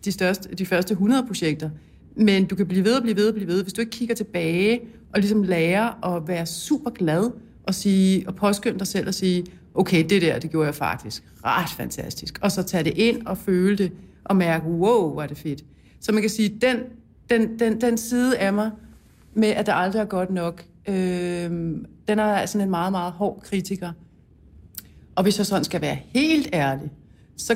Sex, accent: female, native